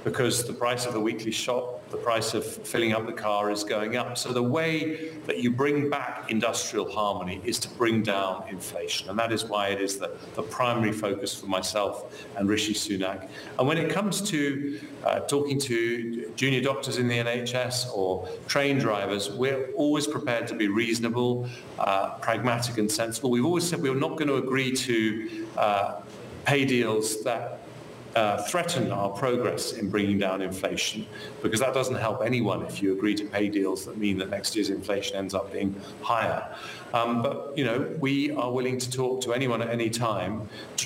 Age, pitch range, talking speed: 40-59, 105-125 Hz, 195 wpm